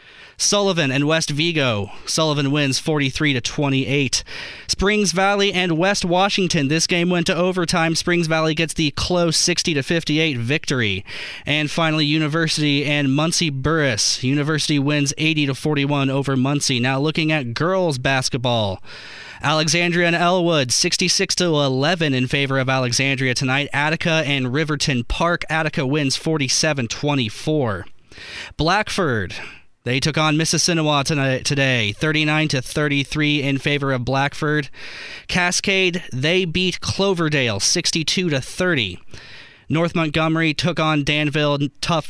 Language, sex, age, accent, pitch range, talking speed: English, male, 20-39, American, 135-165 Hz, 115 wpm